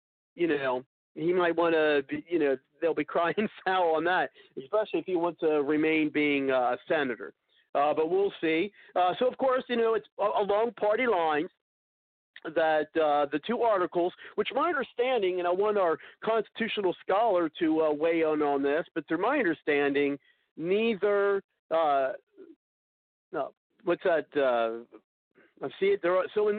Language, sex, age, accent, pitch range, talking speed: English, male, 50-69, American, 150-205 Hz, 160 wpm